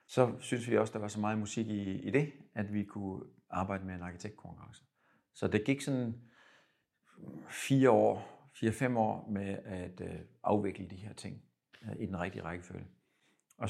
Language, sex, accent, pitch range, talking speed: Danish, male, native, 95-110 Hz, 170 wpm